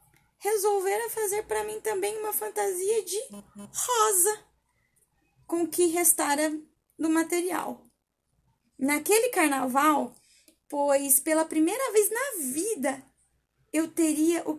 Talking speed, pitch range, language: 105 wpm, 260-350 Hz, Portuguese